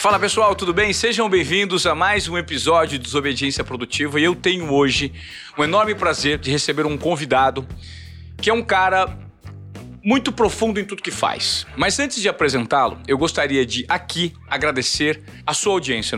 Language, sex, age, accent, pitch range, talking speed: Portuguese, male, 40-59, Brazilian, 135-195 Hz, 170 wpm